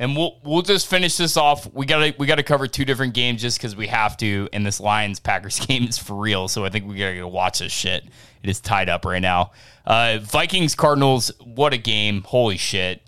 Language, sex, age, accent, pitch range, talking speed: English, male, 20-39, American, 110-155 Hz, 240 wpm